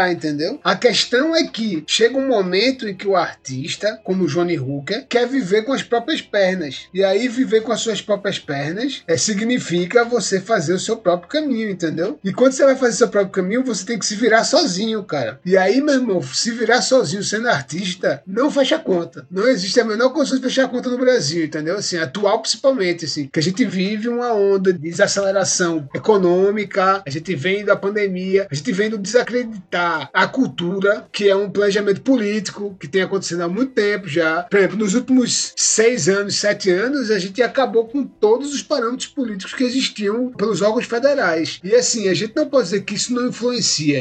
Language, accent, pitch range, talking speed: Portuguese, Brazilian, 185-245 Hz, 200 wpm